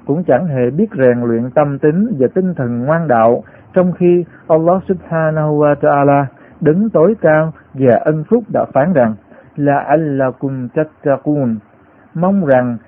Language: Vietnamese